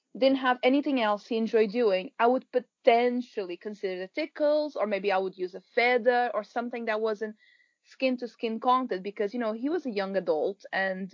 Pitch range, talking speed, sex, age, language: 210-270 Hz, 200 wpm, female, 20-39, English